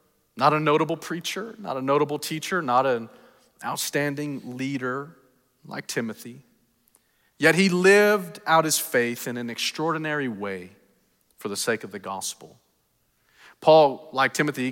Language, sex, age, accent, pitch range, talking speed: English, male, 40-59, American, 125-175 Hz, 135 wpm